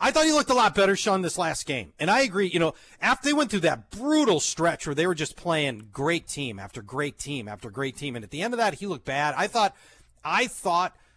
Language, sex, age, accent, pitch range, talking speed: English, male, 40-59, American, 135-185 Hz, 265 wpm